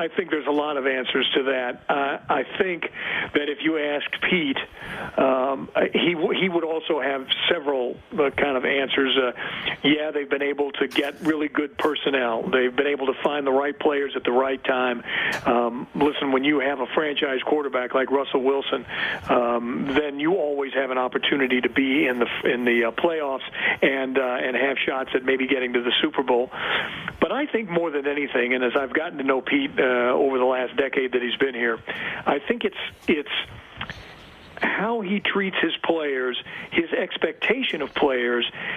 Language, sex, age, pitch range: English, male, 40-59, 135-165 Hz